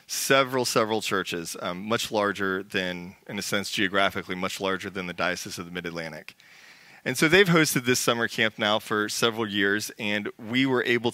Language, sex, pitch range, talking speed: English, male, 105-135 Hz, 185 wpm